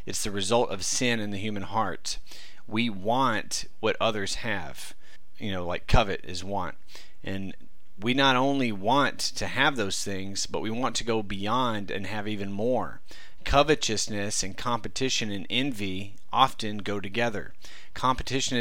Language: English